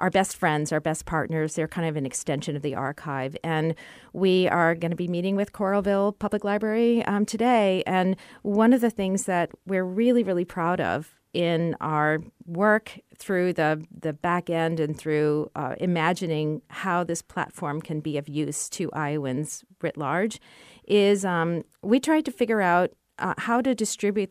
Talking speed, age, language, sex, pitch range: 180 wpm, 40-59, English, female, 155-205 Hz